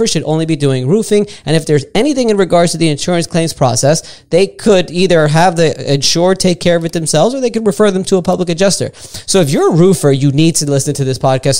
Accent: American